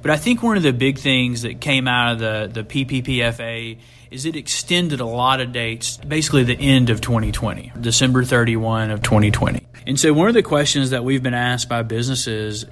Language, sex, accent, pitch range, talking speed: English, male, American, 120-145 Hz, 205 wpm